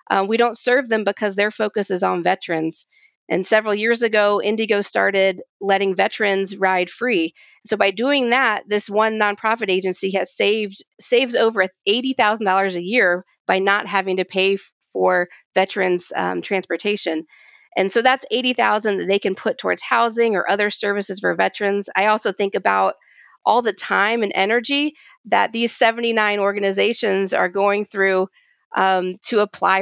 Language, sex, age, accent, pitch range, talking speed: English, female, 40-59, American, 190-225 Hz, 155 wpm